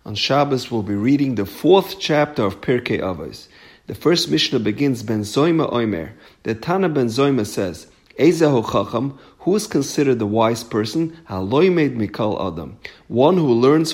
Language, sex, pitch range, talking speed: English, male, 110-155 Hz, 160 wpm